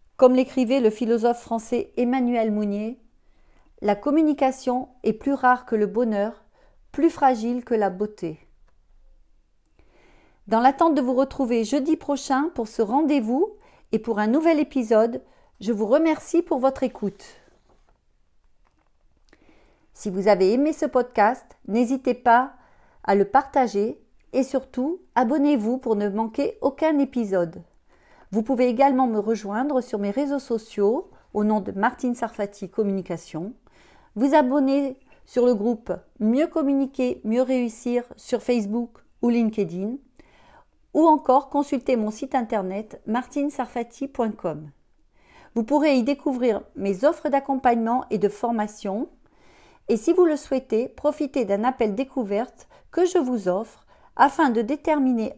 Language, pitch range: French, 210-275 Hz